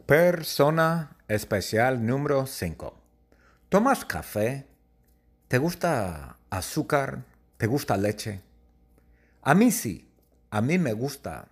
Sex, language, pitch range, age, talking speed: male, English, 95-150 Hz, 50-69, 100 wpm